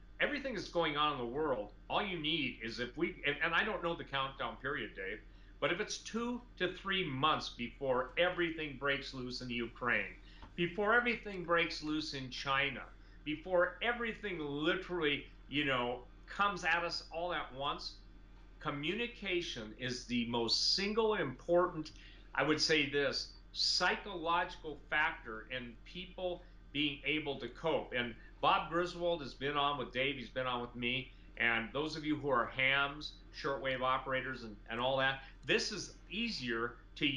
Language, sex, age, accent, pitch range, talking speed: English, male, 50-69, American, 120-165 Hz, 165 wpm